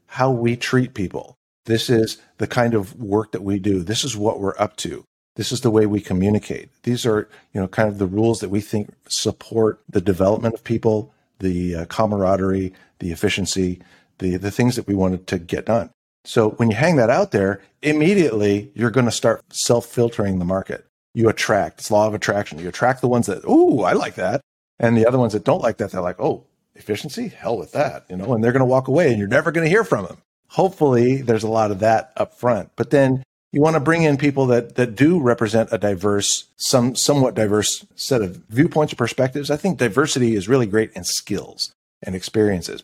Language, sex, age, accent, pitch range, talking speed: English, male, 50-69, American, 100-125 Hz, 215 wpm